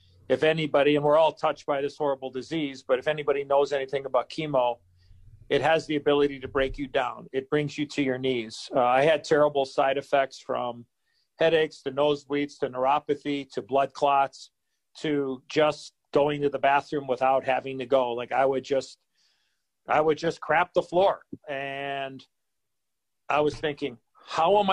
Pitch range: 130-150 Hz